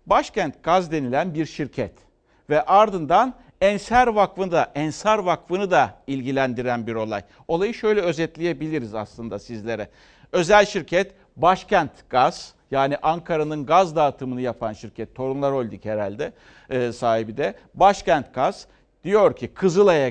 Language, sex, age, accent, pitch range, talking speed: Turkish, male, 60-79, native, 130-200 Hz, 125 wpm